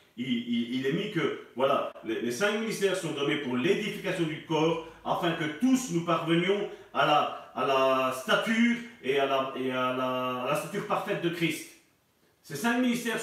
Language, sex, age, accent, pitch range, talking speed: French, male, 40-59, French, 150-230 Hz, 190 wpm